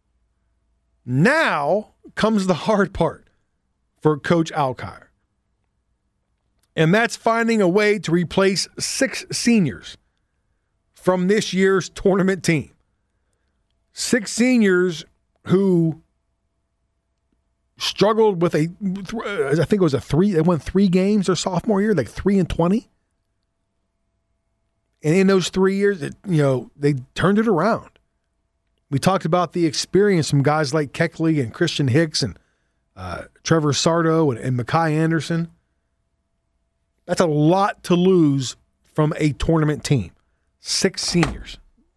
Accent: American